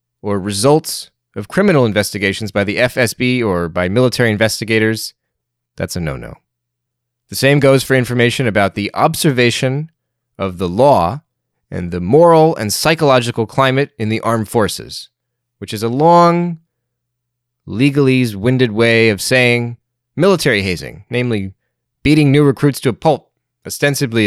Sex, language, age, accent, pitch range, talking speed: male, English, 30-49, American, 100-135 Hz, 135 wpm